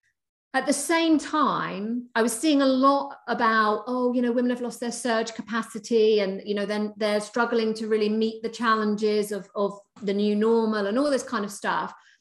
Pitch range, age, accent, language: 225-280 Hz, 40-59, British, English